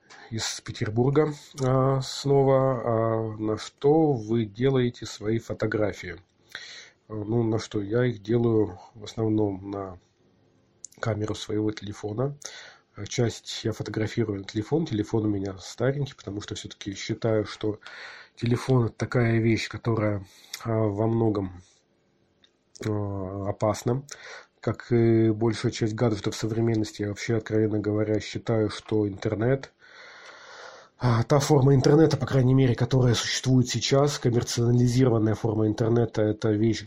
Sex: male